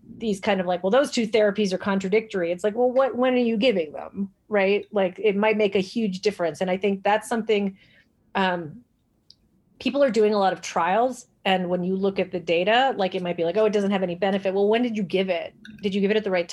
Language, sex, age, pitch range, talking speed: English, female, 30-49, 175-215 Hz, 260 wpm